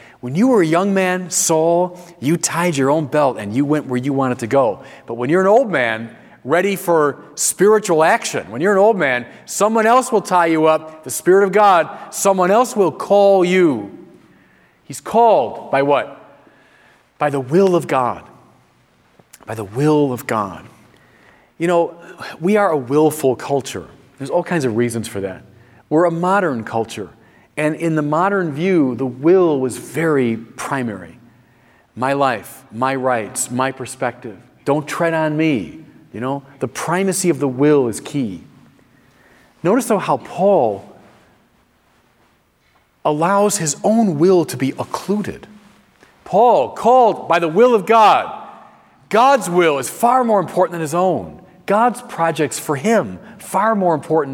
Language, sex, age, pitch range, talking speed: English, male, 40-59, 130-185 Hz, 160 wpm